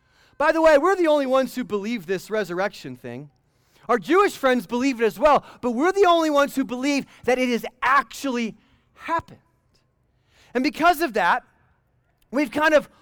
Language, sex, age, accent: English, male, 30-49, American